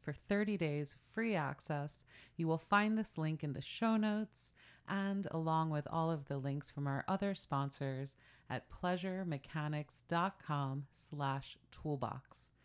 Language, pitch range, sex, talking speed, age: English, 135-180 Hz, female, 135 wpm, 30-49